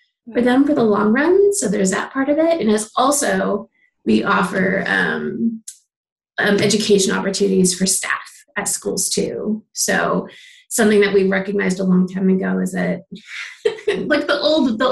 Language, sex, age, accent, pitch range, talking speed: English, female, 20-39, American, 195-235 Hz, 165 wpm